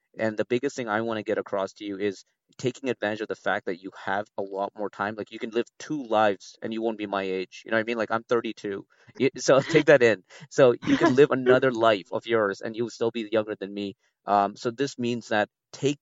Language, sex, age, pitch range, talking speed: English, male, 30-49, 100-115 Hz, 260 wpm